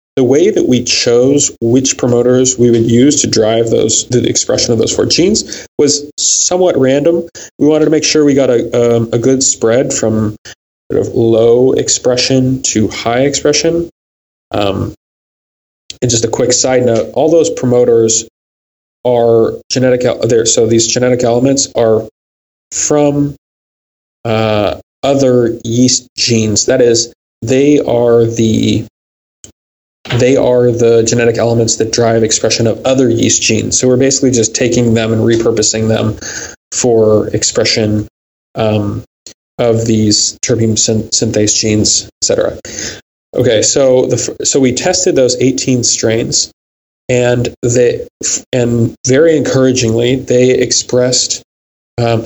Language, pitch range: English, 110-125 Hz